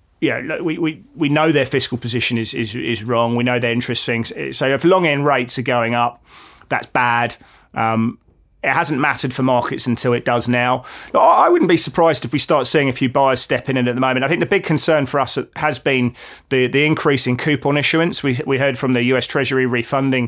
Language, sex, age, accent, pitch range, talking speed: English, male, 30-49, British, 125-145 Hz, 230 wpm